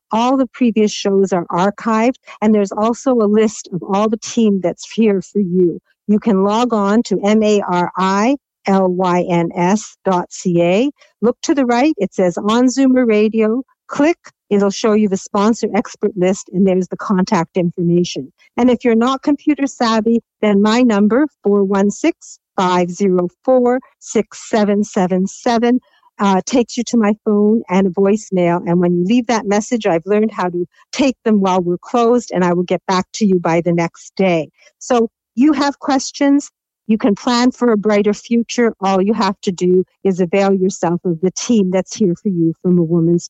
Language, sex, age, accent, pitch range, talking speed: English, female, 60-79, American, 185-235 Hz, 170 wpm